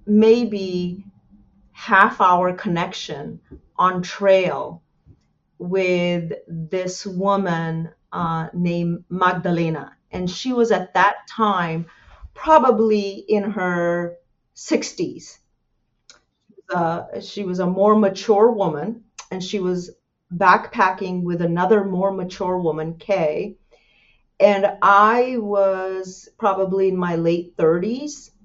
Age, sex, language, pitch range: 40-59, female, English, 175-210 Hz